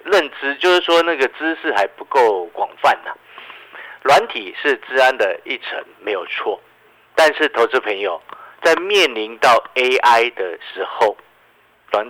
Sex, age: male, 50-69